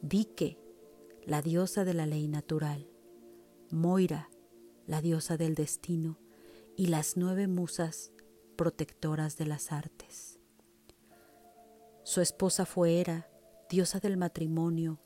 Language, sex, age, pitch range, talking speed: Spanish, female, 40-59, 150-185 Hz, 110 wpm